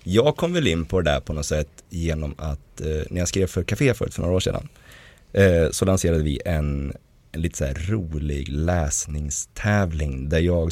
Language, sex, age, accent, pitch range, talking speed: Swedish, male, 30-49, native, 75-100 Hz, 200 wpm